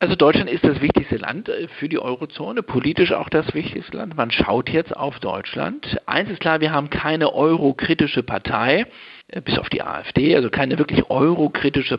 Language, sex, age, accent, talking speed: German, male, 60-79, German, 175 wpm